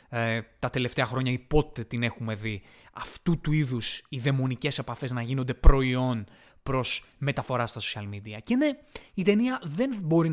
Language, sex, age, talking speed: Greek, male, 20-39, 165 wpm